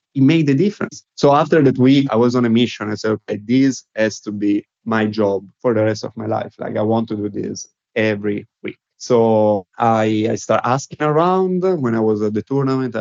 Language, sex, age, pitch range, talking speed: English, male, 30-49, 110-125 Hz, 220 wpm